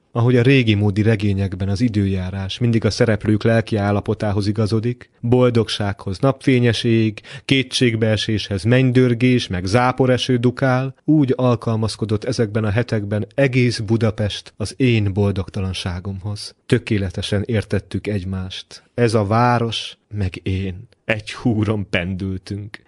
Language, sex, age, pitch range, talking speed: Hungarian, male, 30-49, 105-125 Hz, 110 wpm